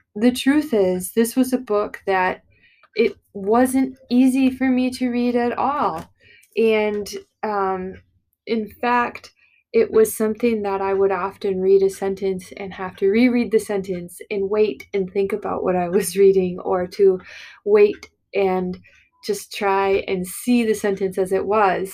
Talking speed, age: 160 wpm, 20-39